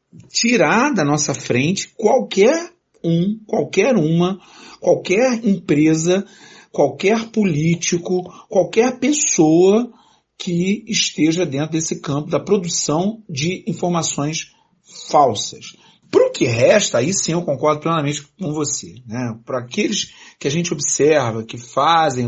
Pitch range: 130-185 Hz